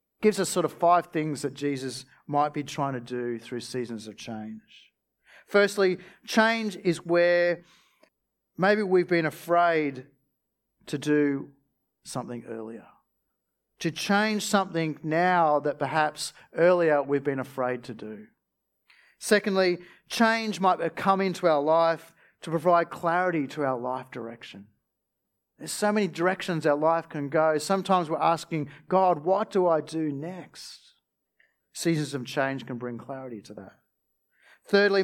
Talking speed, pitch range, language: 140 wpm, 130-175 Hz, English